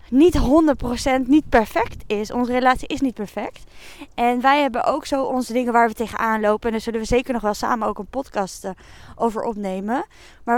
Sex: female